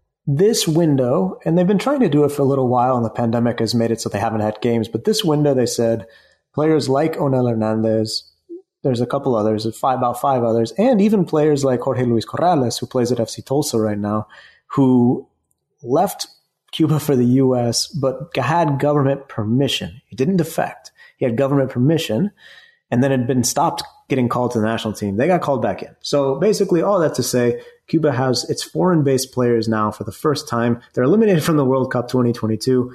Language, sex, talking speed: English, male, 200 wpm